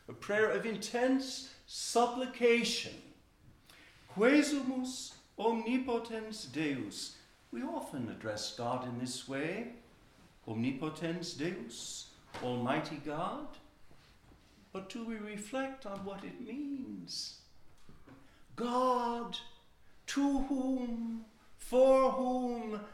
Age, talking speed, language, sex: 60-79, 85 wpm, English, male